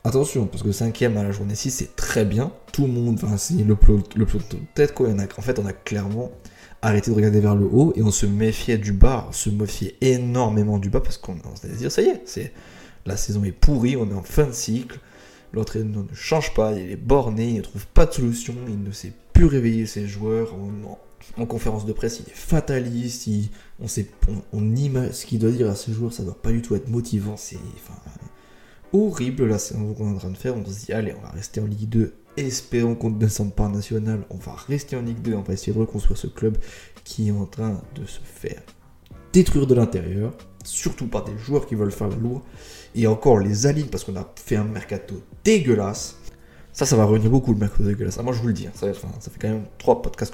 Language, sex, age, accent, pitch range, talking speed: French, male, 20-39, French, 100-120 Hz, 245 wpm